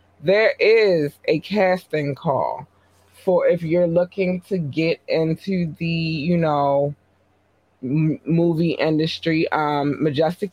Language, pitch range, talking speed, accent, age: English, 130-170 Hz, 110 wpm, American, 20-39